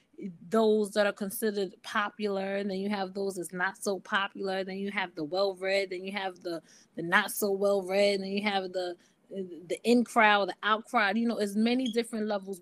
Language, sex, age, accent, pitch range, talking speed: English, female, 20-39, American, 195-235 Hz, 200 wpm